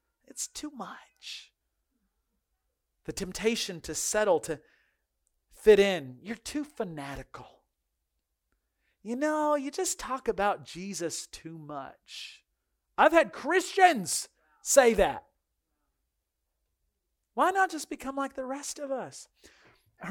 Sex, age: male, 40-59